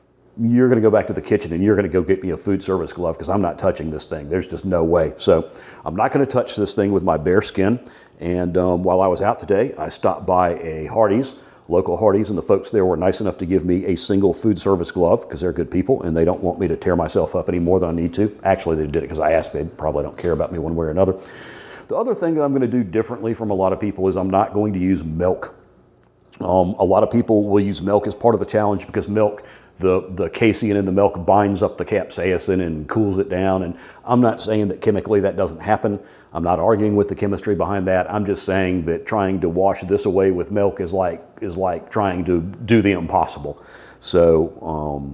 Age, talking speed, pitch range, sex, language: 40-59, 260 wpm, 85-105 Hz, male, English